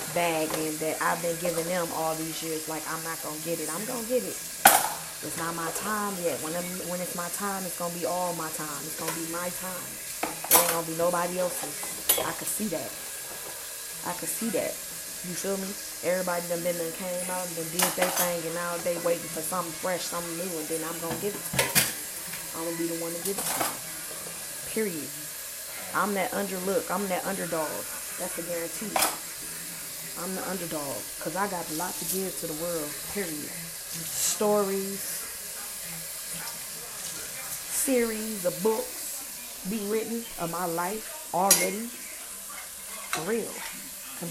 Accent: American